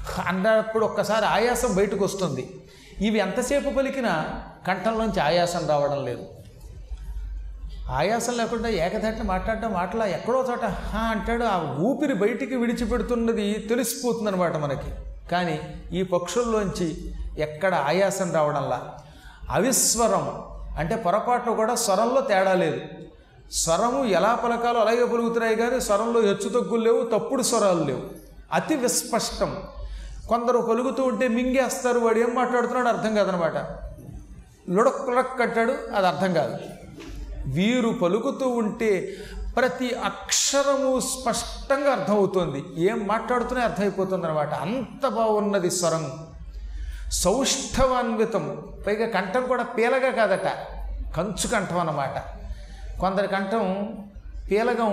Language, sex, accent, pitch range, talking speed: Telugu, male, native, 175-240 Hz, 105 wpm